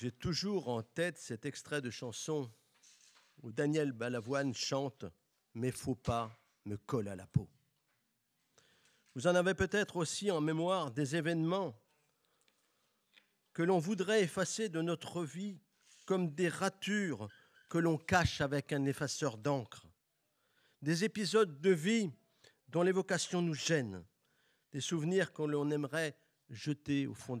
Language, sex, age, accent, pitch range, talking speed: French, male, 50-69, French, 130-175 Hz, 140 wpm